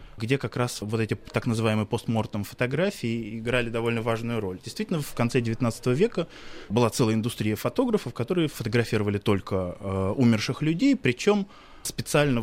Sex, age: male, 20-39